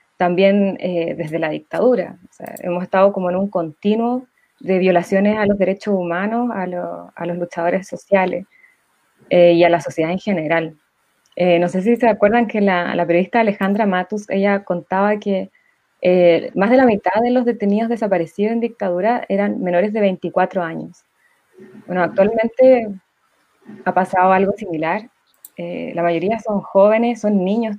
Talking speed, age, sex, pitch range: 165 wpm, 20-39, female, 180-220 Hz